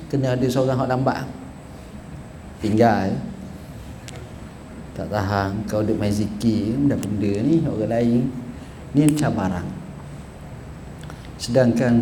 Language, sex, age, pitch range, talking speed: Malay, male, 50-69, 100-115 Hz, 105 wpm